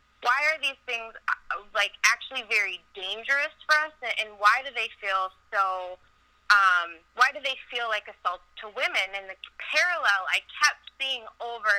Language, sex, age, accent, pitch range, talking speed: English, female, 20-39, American, 185-255 Hz, 165 wpm